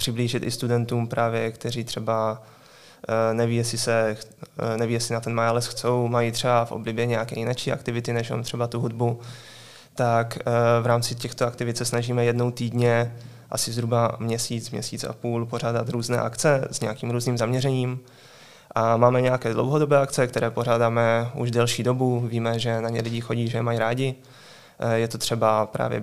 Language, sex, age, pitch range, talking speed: Czech, male, 20-39, 115-120 Hz, 165 wpm